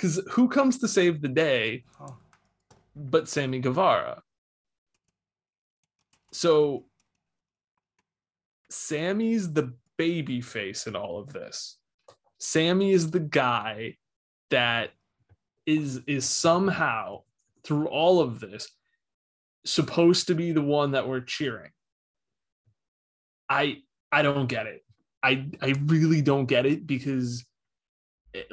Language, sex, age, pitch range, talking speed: English, male, 20-39, 125-160 Hz, 110 wpm